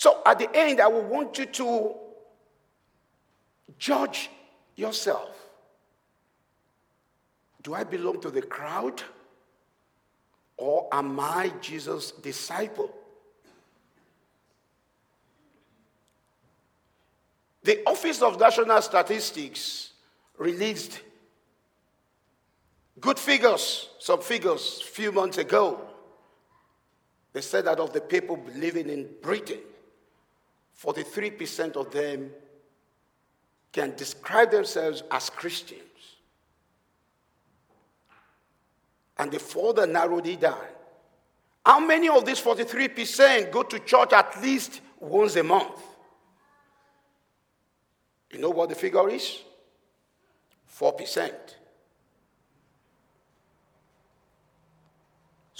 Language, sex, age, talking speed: English, male, 50-69, 85 wpm